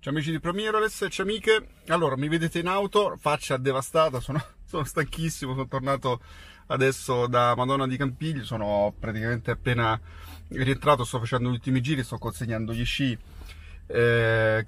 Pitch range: 120-150 Hz